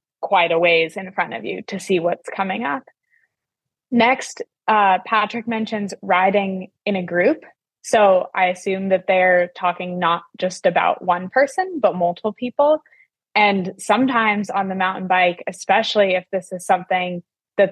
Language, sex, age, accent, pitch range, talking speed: English, female, 20-39, American, 180-220 Hz, 155 wpm